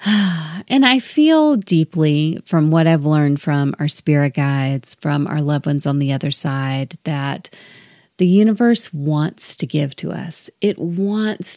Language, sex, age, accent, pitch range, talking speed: English, female, 30-49, American, 155-195 Hz, 155 wpm